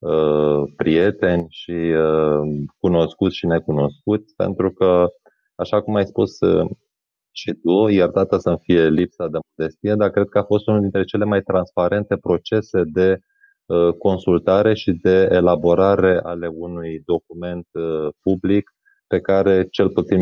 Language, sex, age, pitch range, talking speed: Romanian, male, 20-39, 85-100 Hz, 130 wpm